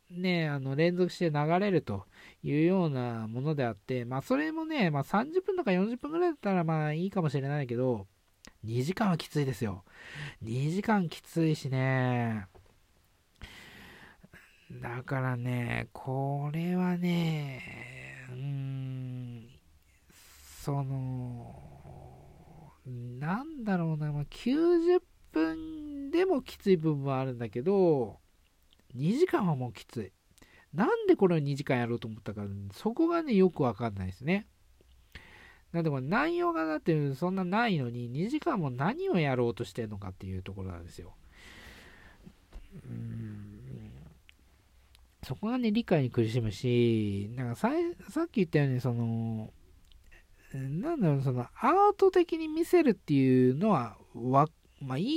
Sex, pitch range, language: male, 115-190 Hz, Japanese